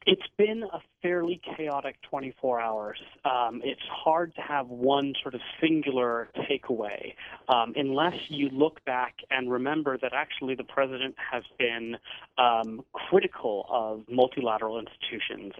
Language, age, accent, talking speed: English, 30-49, American, 135 wpm